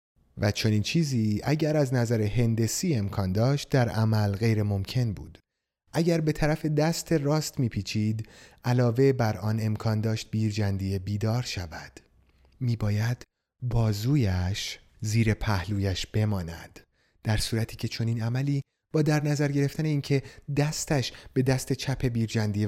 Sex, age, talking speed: male, 30-49, 125 wpm